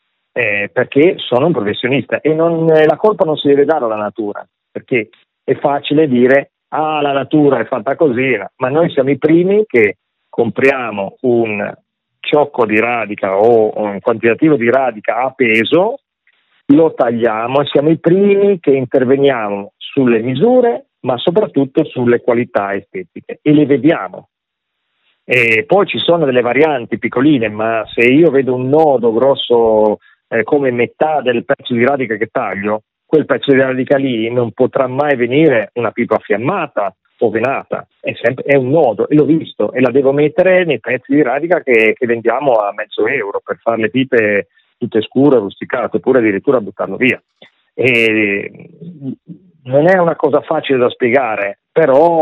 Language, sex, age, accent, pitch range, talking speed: Italian, male, 40-59, native, 115-155 Hz, 160 wpm